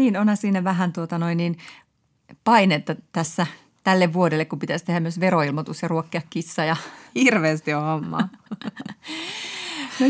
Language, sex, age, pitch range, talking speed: Finnish, female, 30-49, 160-210 Hz, 125 wpm